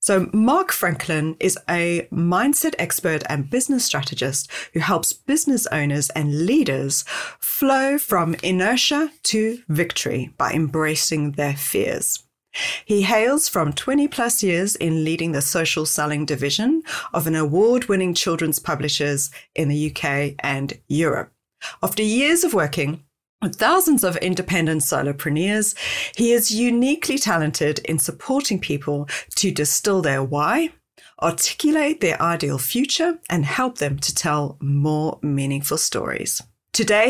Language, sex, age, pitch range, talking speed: English, female, 40-59, 150-235 Hz, 130 wpm